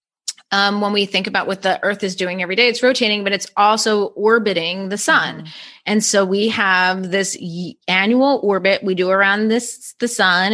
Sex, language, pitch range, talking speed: female, English, 180-220 Hz, 190 wpm